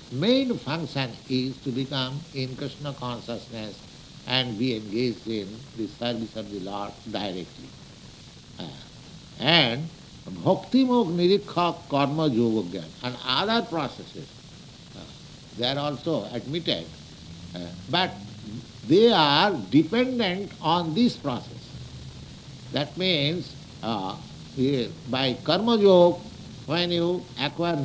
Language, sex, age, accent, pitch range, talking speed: English, male, 60-79, Indian, 125-170 Hz, 110 wpm